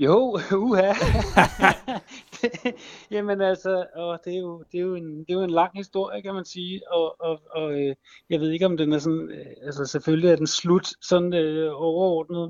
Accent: native